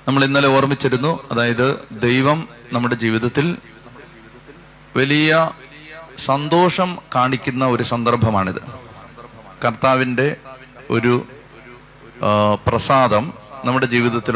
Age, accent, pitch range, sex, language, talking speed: 30-49, native, 120-145 Hz, male, Malayalam, 70 wpm